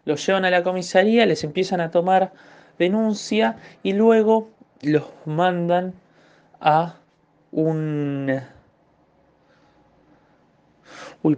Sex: male